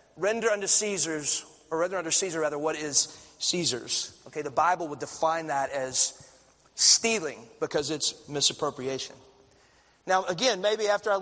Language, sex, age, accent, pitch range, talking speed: English, male, 30-49, American, 155-210 Hz, 145 wpm